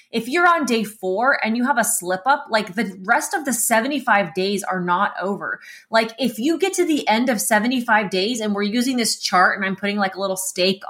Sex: female